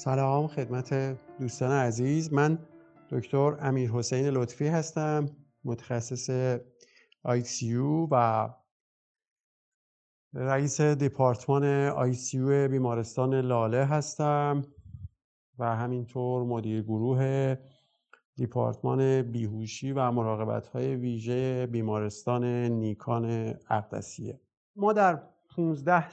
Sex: male